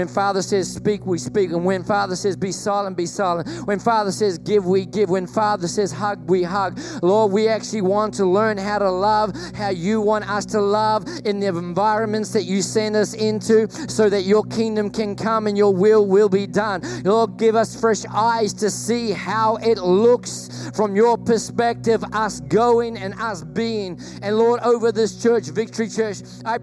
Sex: male